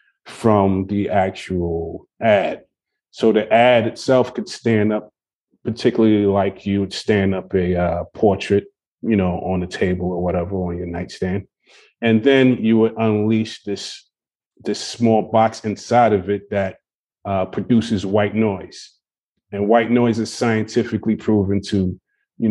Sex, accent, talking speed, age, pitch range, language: male, American, 145 wpm, 30-49, 95-110 Hz, English